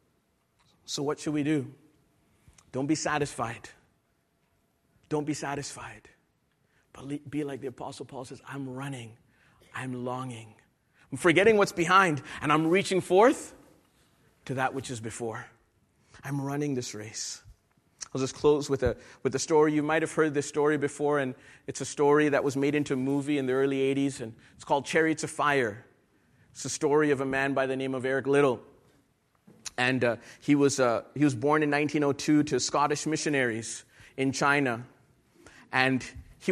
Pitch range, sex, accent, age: 130-150 Hz, male, American, 40-59